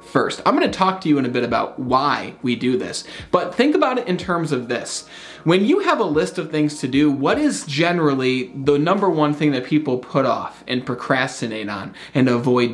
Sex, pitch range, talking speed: male, 130-180 Hz, 220 wpm